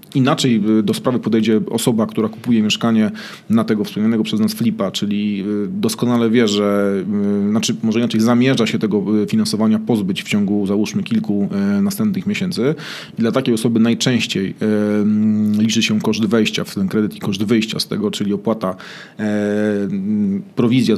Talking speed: 145 wpm